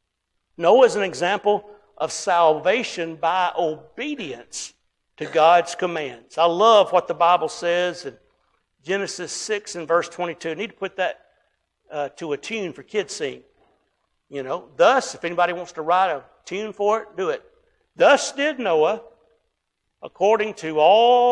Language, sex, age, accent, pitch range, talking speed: English, male, 60-79, American, 165-220 Hz, 160 wpm